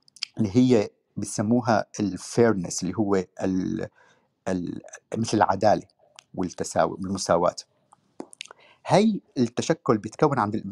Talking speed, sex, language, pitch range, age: 80 wpm, male, Arabic, 105-135 Hz, 50-69